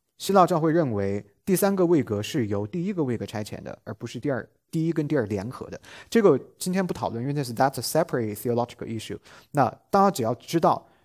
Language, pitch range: English, 115-175 Hz